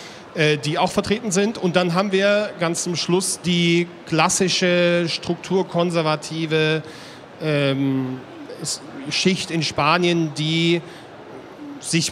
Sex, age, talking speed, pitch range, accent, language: male, 40-59, 100 wpm, 150-180 Hz, German, German